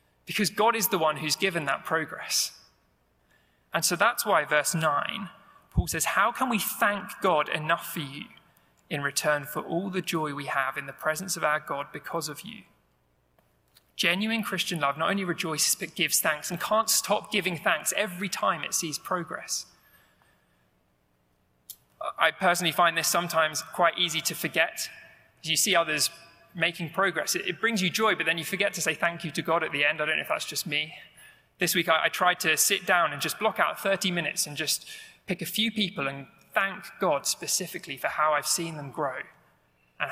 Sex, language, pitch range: male, English, 140-175 Hz